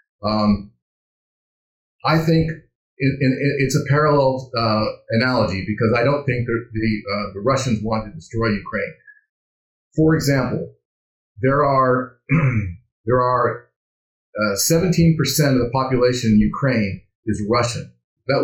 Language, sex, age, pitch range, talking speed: English, male, 40-59, 115-150 Hz, 105 wpm